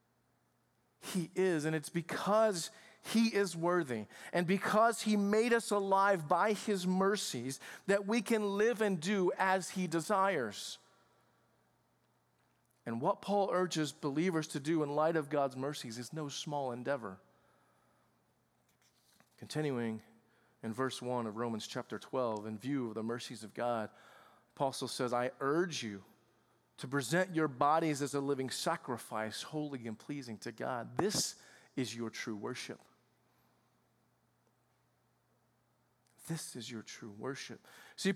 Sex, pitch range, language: male, 140-205 Hz, English